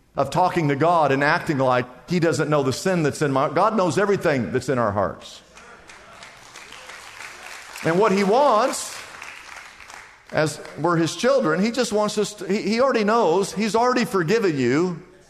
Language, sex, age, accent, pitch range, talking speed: English, male, 50-69, American, 140-205 Hz, 160 wpm